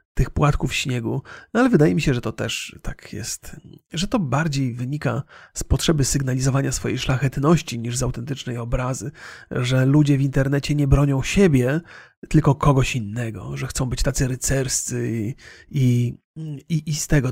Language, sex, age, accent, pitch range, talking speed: Polish, male, 40-59, native, 125-155 Hz, 165 wpm